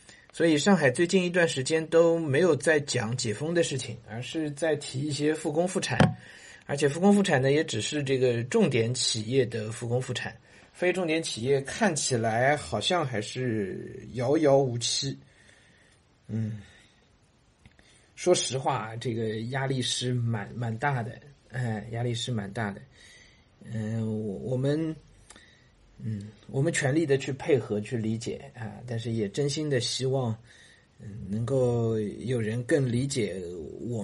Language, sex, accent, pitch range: Chinese, male, native, 110-145 Hz